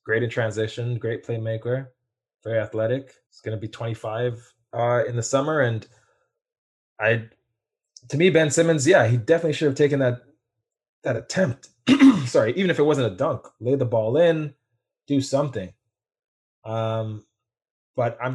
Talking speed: 155 wpm